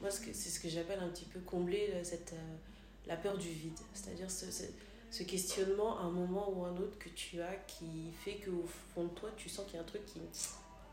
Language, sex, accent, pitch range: French, female, French, 165-205 Hz